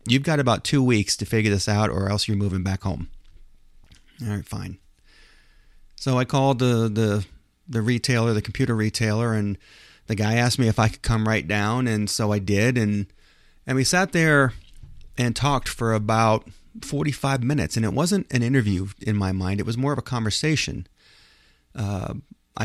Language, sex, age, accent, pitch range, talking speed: English, male, 40-59, American, 105-130 Hz, 185 wpm